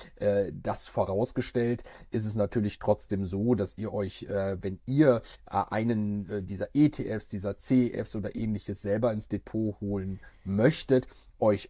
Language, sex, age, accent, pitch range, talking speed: German, male, 40-59, German, 100-115 Hz, 130 wpm